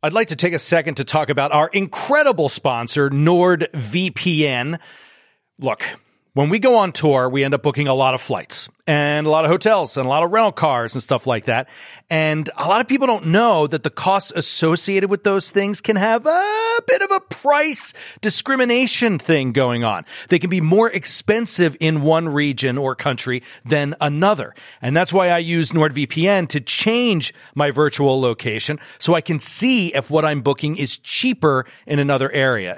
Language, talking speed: English, 190 wpm